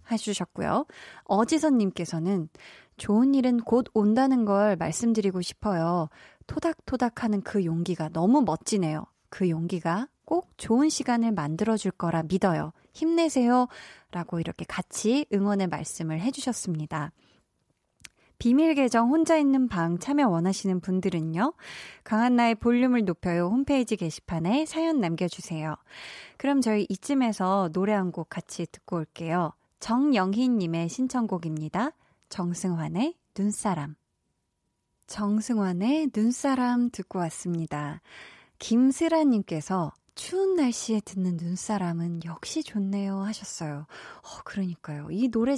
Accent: native